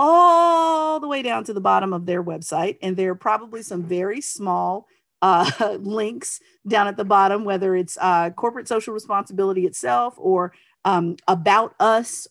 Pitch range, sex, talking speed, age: 180-230 Hz, female, 165 wpm, 40-59